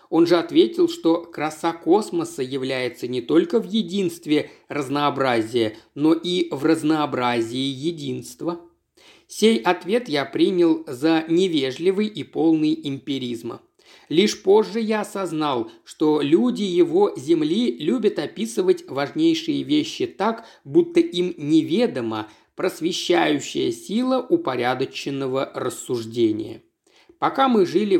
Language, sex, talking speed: Russian, male, 105 wpm